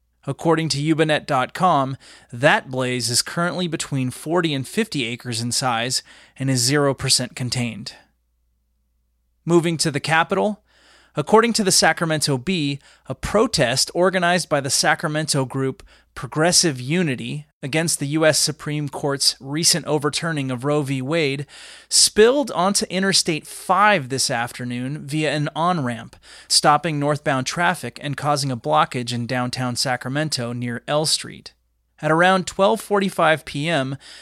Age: 30-49